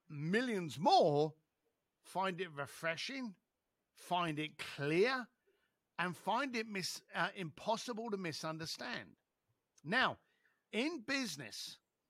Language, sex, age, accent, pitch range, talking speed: English, male, 50-69, British, 155-225 Hz, 95 wpm